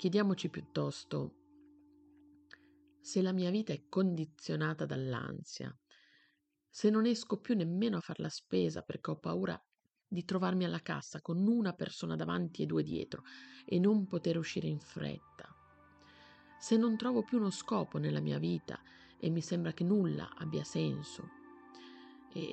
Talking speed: 145 wpm